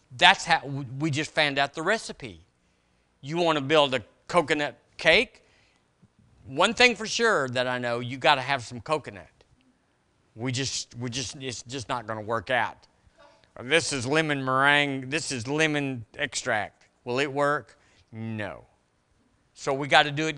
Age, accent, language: 50-69, American, English